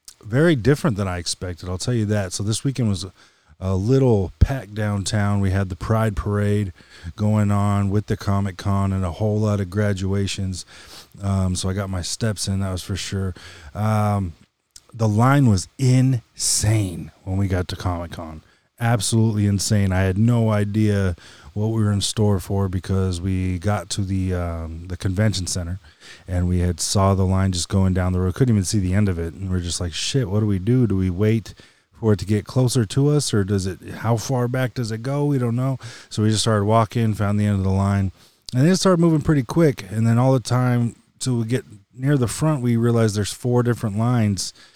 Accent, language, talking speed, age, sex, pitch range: American, English, 215 wpm, 30-49, male, 95-115 Hz